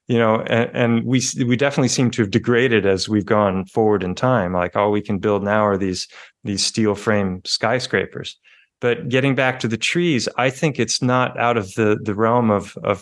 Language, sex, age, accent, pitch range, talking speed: English, male, 30-49, American, 110-135 Hz, 210 wpm